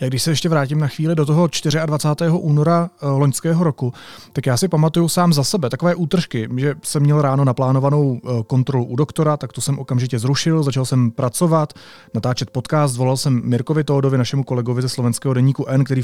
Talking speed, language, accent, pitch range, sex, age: 190 wpm, Czech, native, 135-155 Hz, male, 30-49